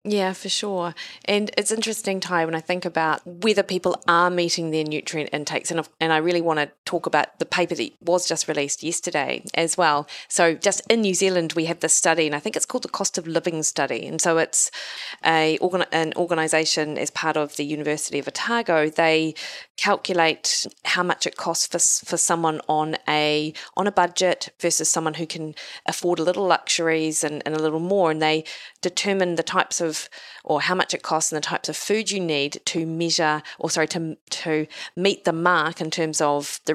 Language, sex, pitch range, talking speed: English, female, 155-180 Hz, 205 wpm